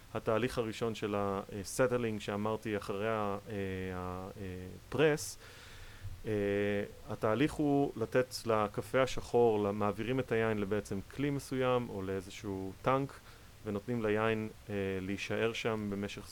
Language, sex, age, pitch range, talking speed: Hebrew, male, 30-49, 100-115 Hz, 95 wpm